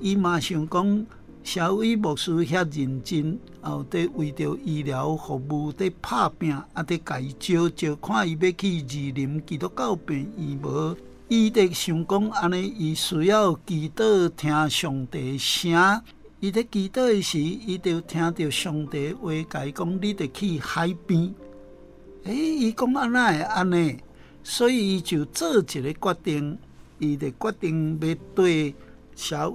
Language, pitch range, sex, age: Chinese, 145-190 Hz, male, 60-79